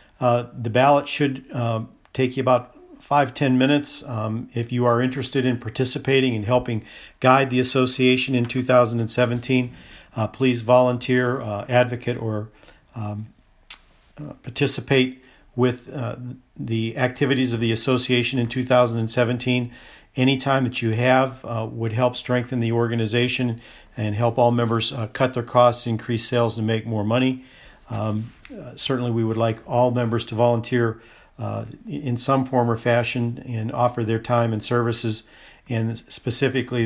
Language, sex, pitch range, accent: English, male, 115-130 Hz, American